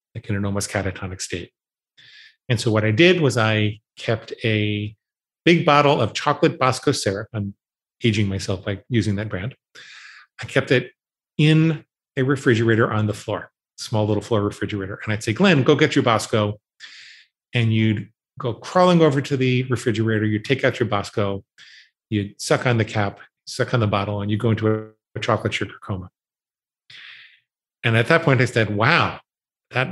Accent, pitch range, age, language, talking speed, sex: American, 105-130 Hz, 40-59, English, 175 wpm, male